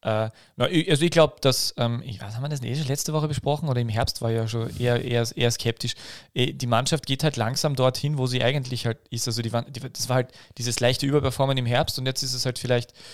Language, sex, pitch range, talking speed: German, male, 110-130 Hz, 235 wpm